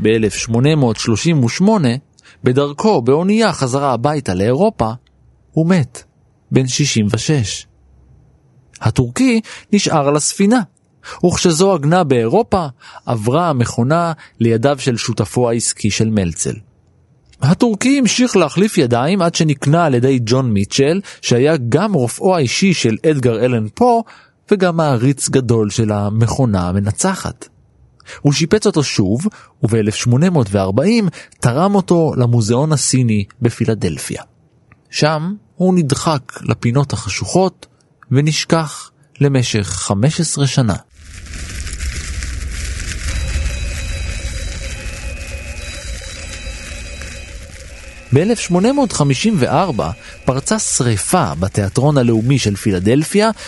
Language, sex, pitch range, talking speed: Hebrew, male, 100-165 Hz, 85 wpm